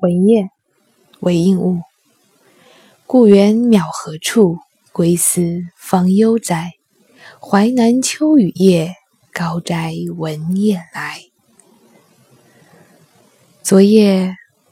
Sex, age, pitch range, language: female, 20-39, 170-200 Hz, Chinese